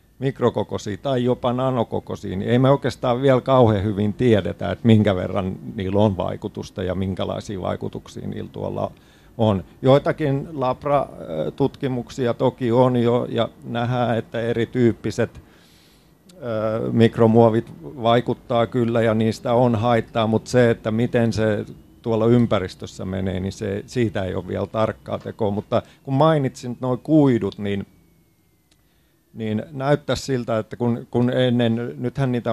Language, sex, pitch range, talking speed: Finnish, male, 100-120 Hz, 130 wpm